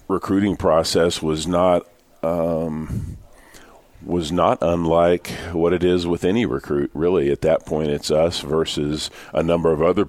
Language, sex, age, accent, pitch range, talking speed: English, male, 40-59, American, 75-90 Hz, 150 wpm